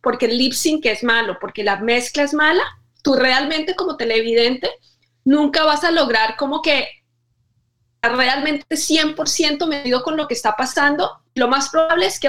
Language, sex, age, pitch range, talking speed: Spanish, female, 30-49, 230-290 Hz, 160 wpm